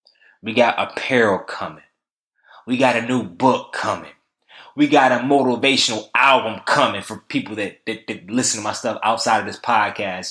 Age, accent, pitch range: 20-39, American, 125-155 Hz